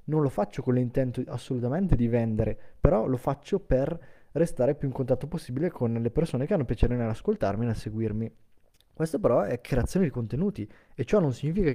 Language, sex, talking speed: Italian, male, 190 wpm